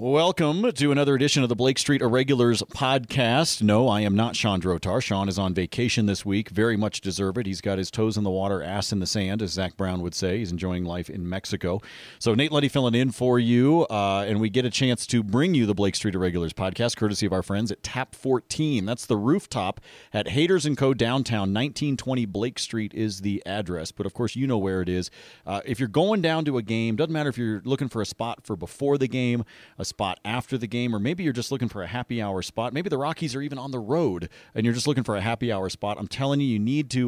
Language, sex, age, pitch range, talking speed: English, male, 30-49, 100-125 Hz, 250 wpm